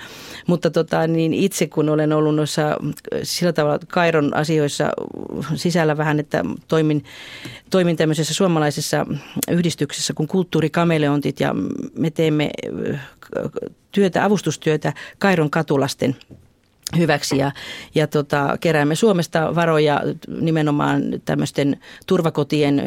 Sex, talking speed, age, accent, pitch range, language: female, 95 wpm, 40-59, native, 150-170 Hz, Finnish